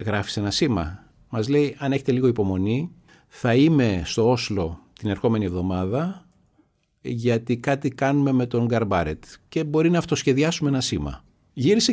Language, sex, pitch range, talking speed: Greek, male, 95-125 Hz, 150 wpm